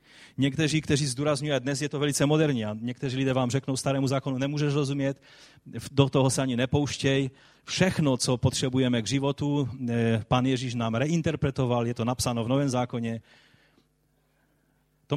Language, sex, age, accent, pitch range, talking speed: Czech, male, 30-49, native, 125-150 Hz, 150 wpm